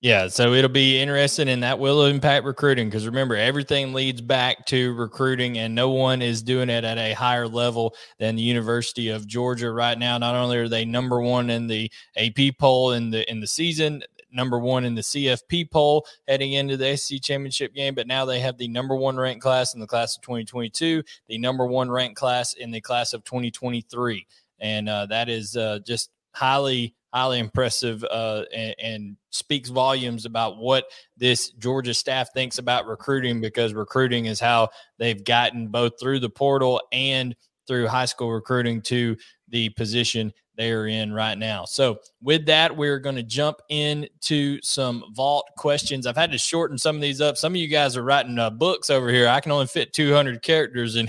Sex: male